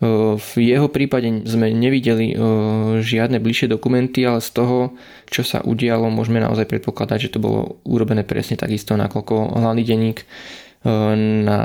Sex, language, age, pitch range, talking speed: male, Slovak, 20-39, 105-115 Hz, 140 wpm